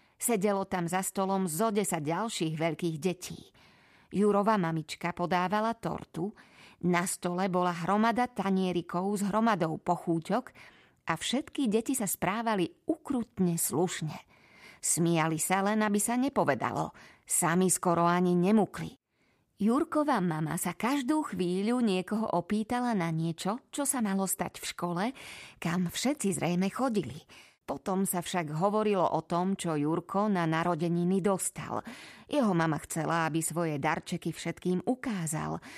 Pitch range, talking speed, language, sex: 170-215 Hz, 125 wpm, Slovak, female